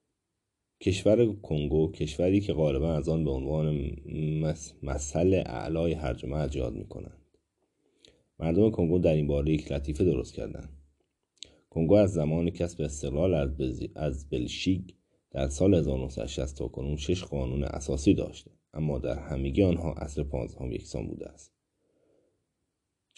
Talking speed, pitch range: 125 wpm, 70-90 Hz